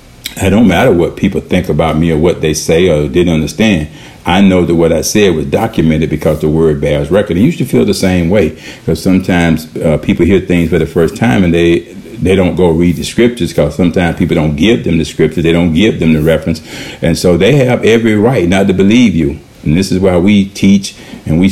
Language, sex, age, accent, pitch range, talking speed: English, male, 50-69, American, 80-95 Hz, 235 wpm